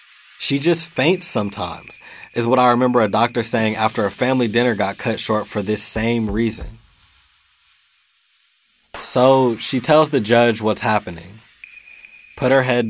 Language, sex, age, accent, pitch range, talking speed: English, male, 20-39, American, 110-150 Hz, 150 wpm